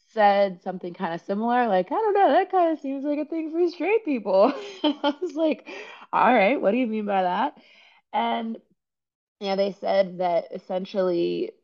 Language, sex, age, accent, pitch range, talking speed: English, female, 20-39, American, 165-225 Hz, 195 wpm